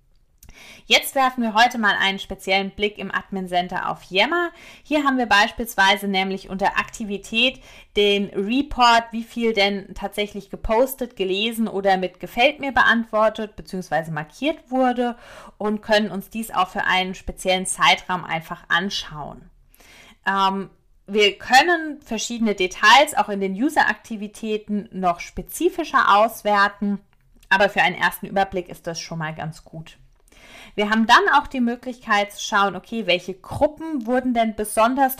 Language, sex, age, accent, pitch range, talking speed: German, female, 30-49, German, 190-235 Hz, 140 wpm